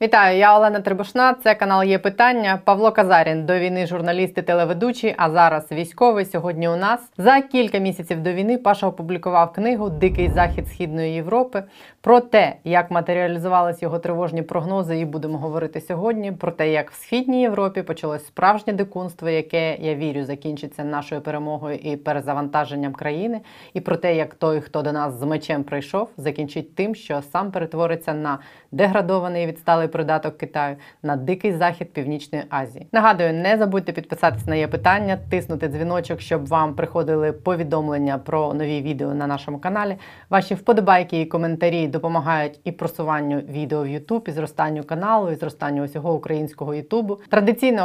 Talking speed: 155 wpm